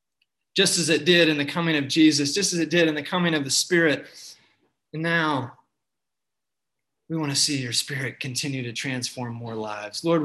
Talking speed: 195 wpm